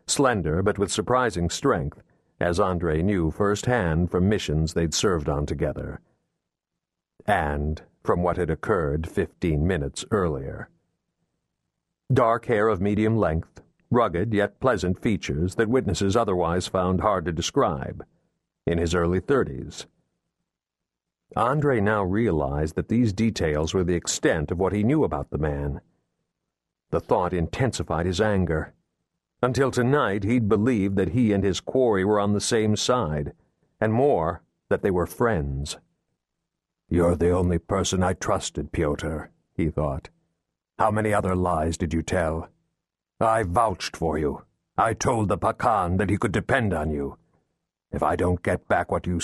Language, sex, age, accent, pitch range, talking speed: English, male, 60-79, American, 80-105 Hz, 145 wpm